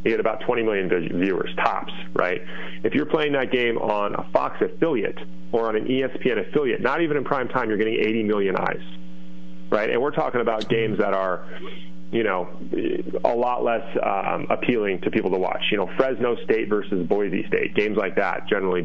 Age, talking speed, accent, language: 30-49, 195 wpm, American, English